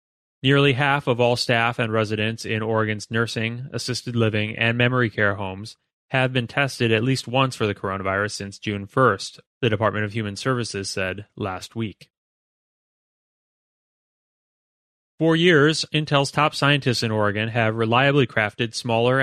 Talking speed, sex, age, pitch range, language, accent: 145 wpm, male, 30-49, 110-135 Hz, English, American